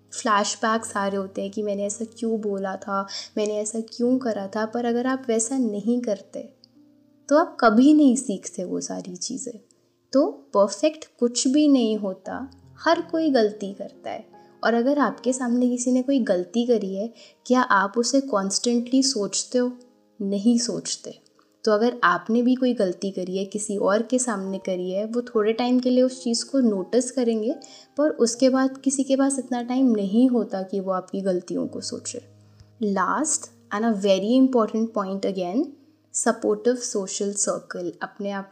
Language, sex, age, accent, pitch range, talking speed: Hindi, female, 10-29, native, 195-245 Hz, 170 wpm